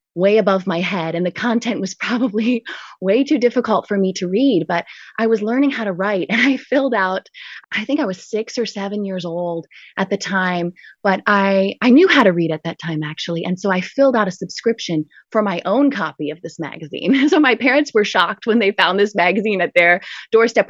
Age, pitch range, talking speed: 20-39, 185-240 Hz, 225 wpm